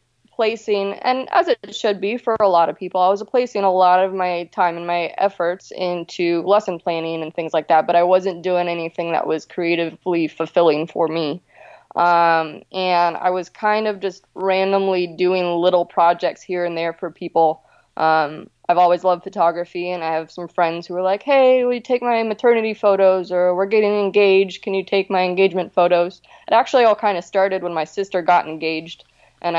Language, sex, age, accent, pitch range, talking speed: English, female, 20-39, American, 170-190 Hz, 200 wpm